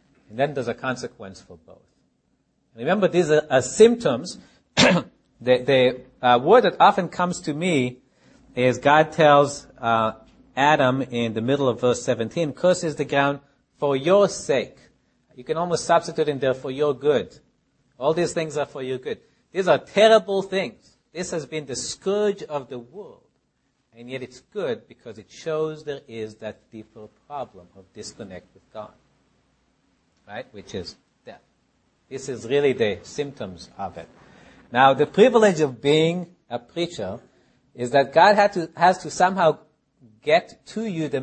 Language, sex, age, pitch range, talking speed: English, male, 50-69, 125-165 Hz, 165 wpm